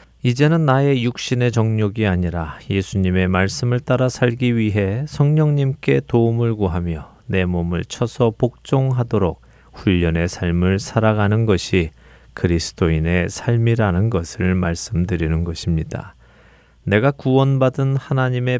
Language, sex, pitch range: Korean, male, 90-125 Hz